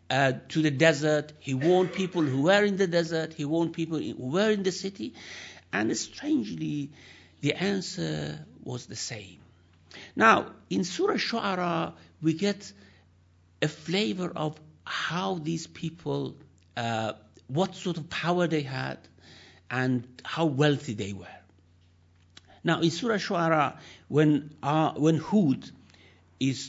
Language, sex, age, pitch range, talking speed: English, male, 60-79, 115-165 Hz, 135 wpm